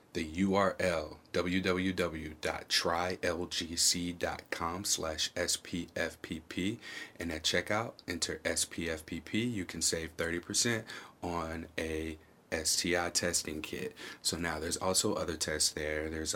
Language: English